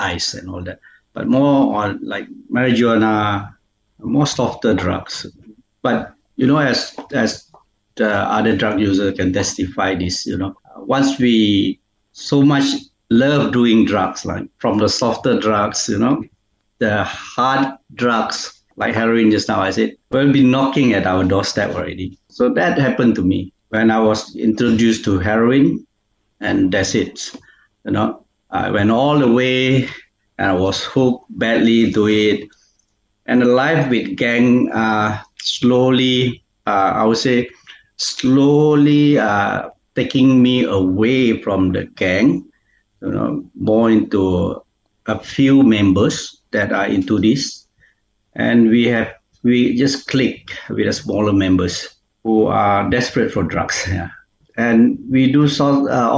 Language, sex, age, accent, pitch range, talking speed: English, male, 60-79, Malaysian, 105-130 Hz, 145 wpm